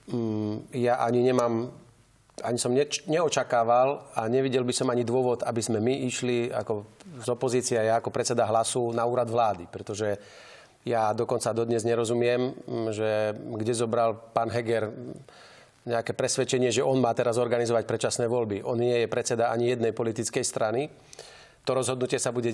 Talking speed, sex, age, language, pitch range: 155 wpm, male, 30-49, Slovak, 115-125 Hz